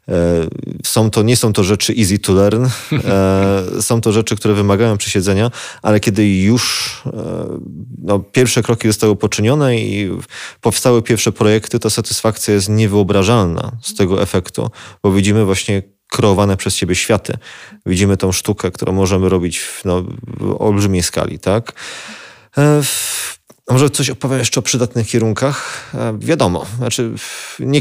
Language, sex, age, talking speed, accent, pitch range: Polish, male, 30-49, 140 wpm, native, 95-115 Hz